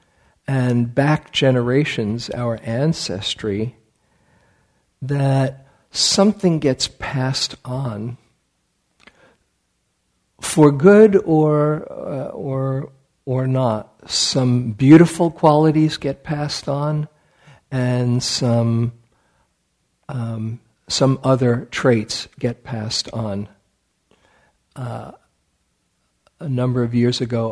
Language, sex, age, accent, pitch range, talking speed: English, male, 50-69, American, 110-135 Hz, 85 wpm